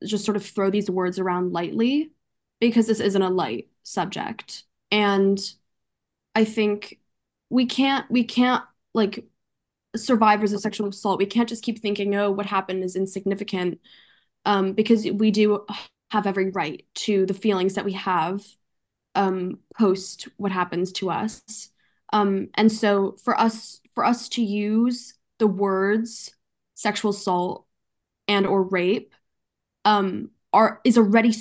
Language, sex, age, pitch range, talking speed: English, female, 10-29, 195-220 Hz, 145 wpm